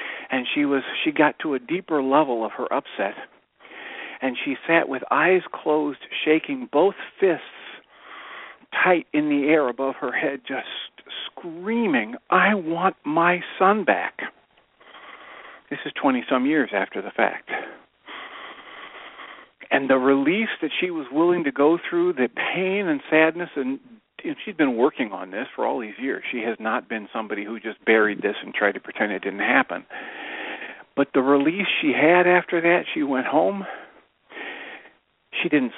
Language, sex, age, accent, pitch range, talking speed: English, male, 50-69, American, 135-215 Hz, 160 wpm